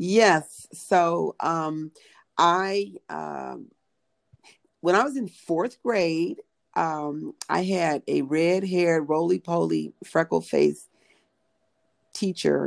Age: 40-59